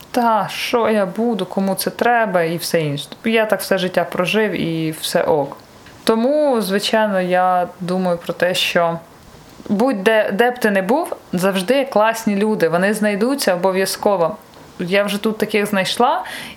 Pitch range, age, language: 185-225 Hz, 20-39, Ukrainian